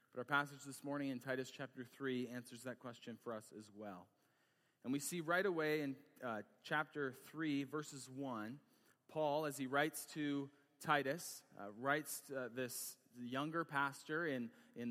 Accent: American